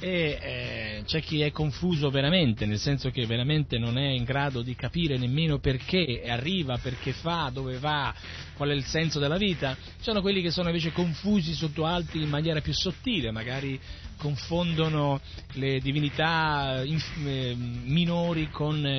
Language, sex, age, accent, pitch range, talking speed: Italian, male, 40-59, native, 140-170 Hz, 160 wpm